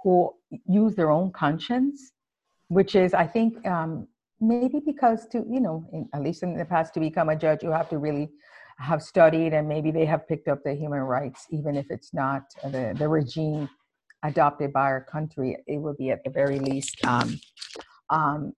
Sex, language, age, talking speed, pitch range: female, Greek, 50-69, 195 wpm, 150-195 Hz